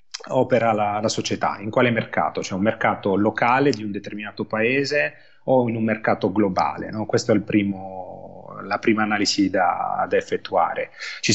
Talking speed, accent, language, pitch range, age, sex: 175 wpm, native, Italian, 105-125 Hz, 30-49, male